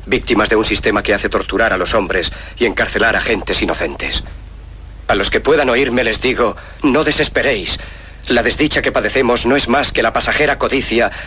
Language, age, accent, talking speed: Spanish, 40-59, Spanish, 185 wpm